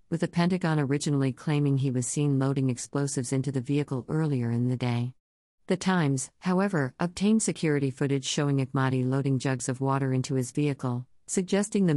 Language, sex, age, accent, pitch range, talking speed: English, female, 50-69, American, 130-170 Hz, 170 wpm